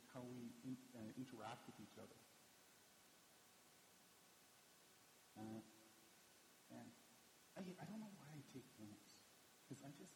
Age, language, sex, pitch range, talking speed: 40-59, English, male, 115-185 Hz, 125 wpm